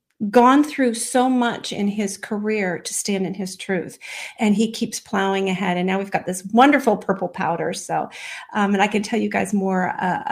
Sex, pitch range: female, 195-235 Hz